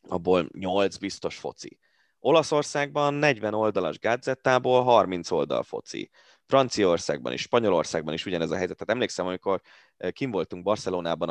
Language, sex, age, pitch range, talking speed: Hungarian, male, 20-39, 90-130 Hz, 125 wpm